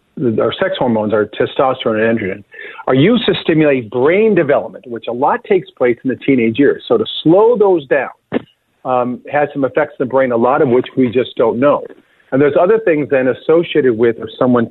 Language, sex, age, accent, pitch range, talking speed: English, male, 50-69, American, 120-175 Hz, 210 wpm